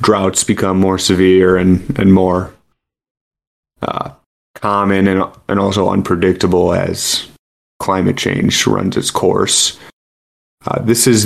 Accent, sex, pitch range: American, male, 95-105 Hz